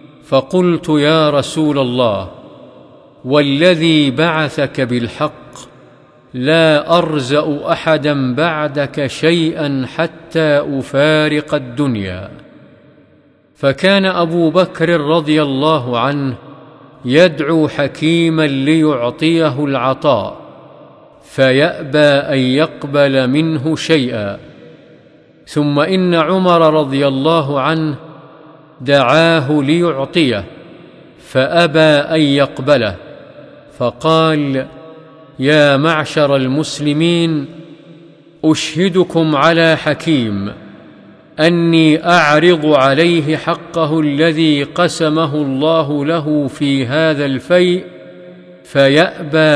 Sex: male